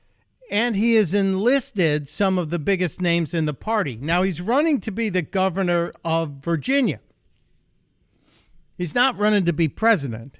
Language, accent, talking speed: English, American, 155 wpm